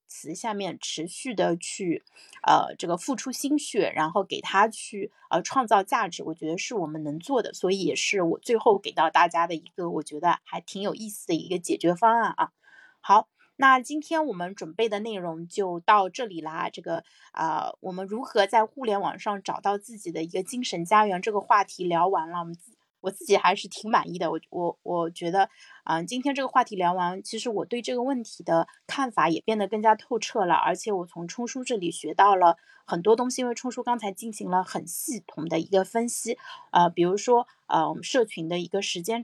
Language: Chinese